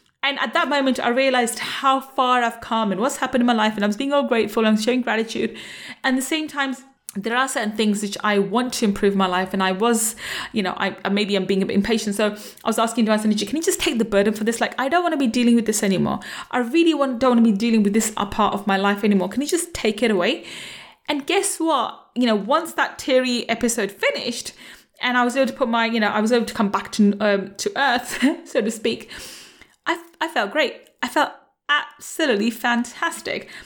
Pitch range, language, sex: 215-275 Hz, English, female